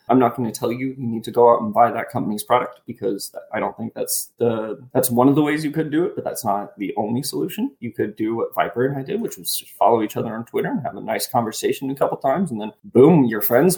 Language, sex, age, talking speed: English, male, 20-39, 290 wpm